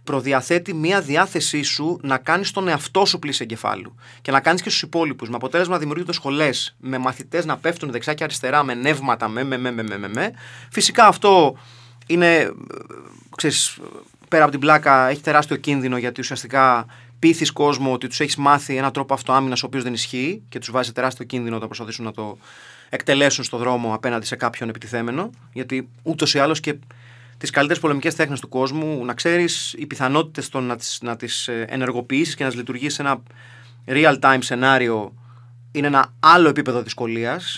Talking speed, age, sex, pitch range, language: 175 wpm, 30-49, male, 120-150 Hz, Greek